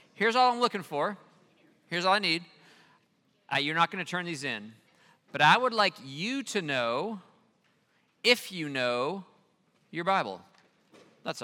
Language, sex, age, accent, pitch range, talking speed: English, male, 40-59, American, 145-210 Hz, 150 wpm